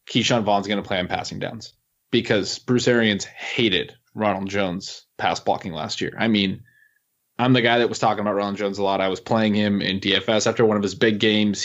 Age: 20-39